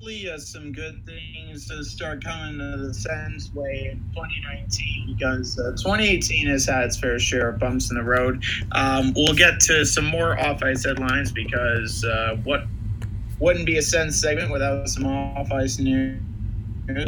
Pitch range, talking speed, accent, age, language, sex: 105-135 Hz, 170 wpm, American, 30-49, English, male